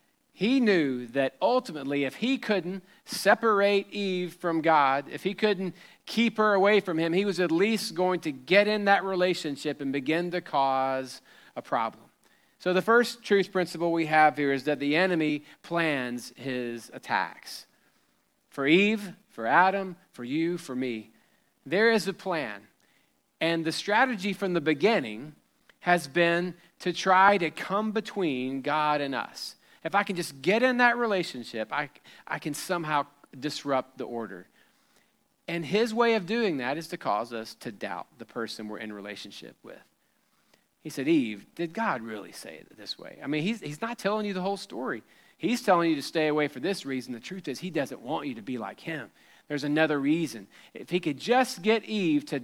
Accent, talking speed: American, 185 wpm